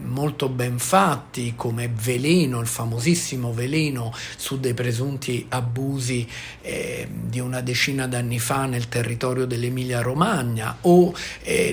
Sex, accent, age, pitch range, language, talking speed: male, native, 50-69, 115-160 Hz, Italian, 125 wpm